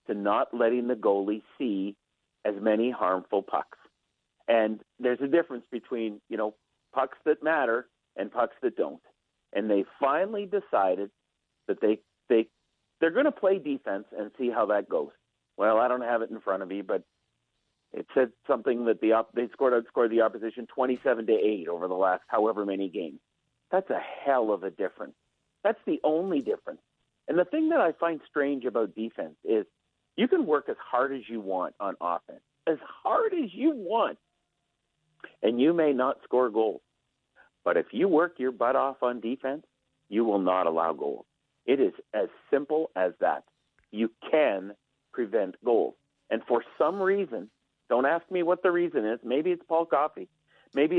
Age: 50-69